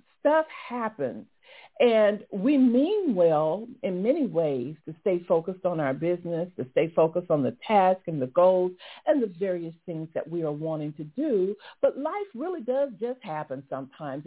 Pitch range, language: 175-275 Hz, English